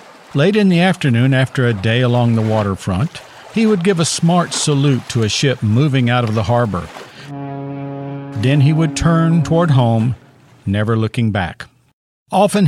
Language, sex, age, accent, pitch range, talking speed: English, male, 50-69, American, 115-150 Hz, 160 wpm